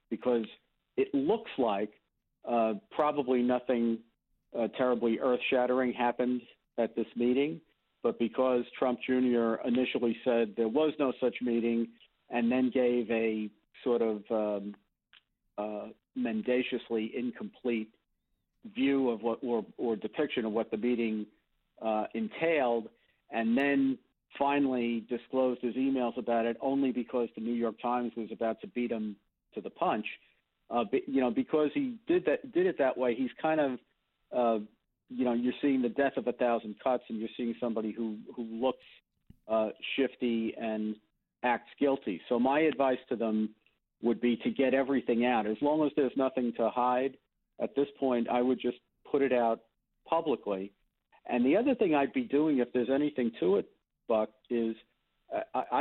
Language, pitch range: English, 115-135 Hz